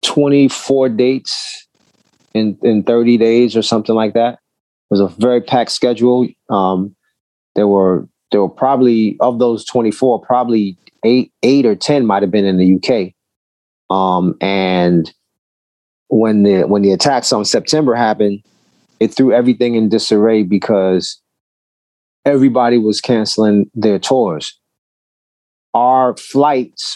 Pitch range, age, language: 100-125 Hz, 30-49, English